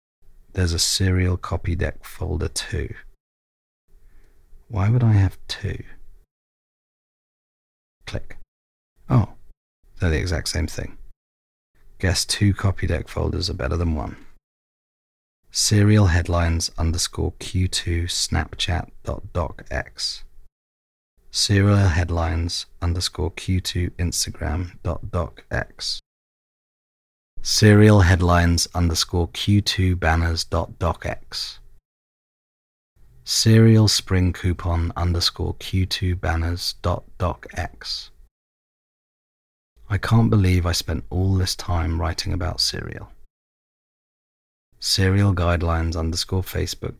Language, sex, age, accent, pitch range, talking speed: English, male, 30-49, British, 80-95 Hz, 95 wpm